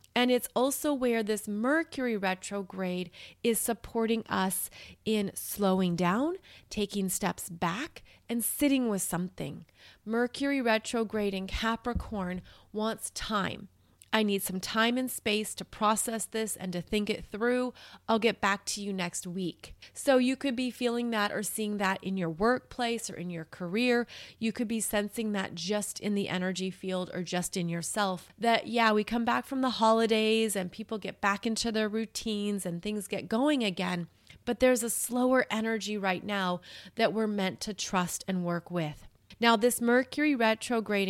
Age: 30-49